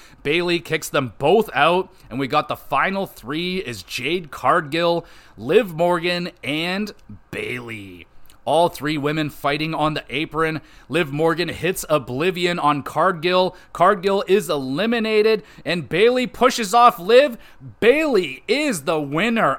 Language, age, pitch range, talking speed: English, 30-49, 130-175 Hz, 130 wpm